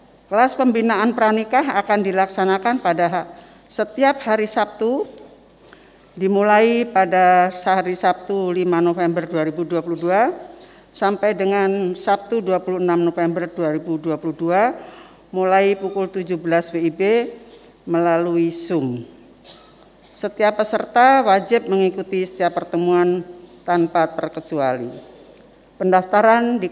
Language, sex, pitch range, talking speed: Indonesian, female, 175-220 Hz, 90 wpm